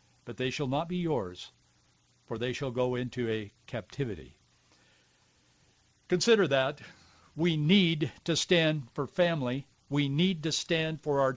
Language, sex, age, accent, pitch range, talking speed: English, male, 60-79, American, 115-160 Hz, 145 wpm